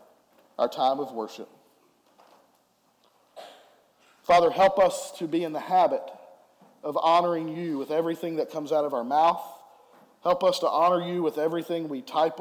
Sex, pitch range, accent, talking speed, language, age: male, 140-180 Hz, American, 155 wpm, English, 40-59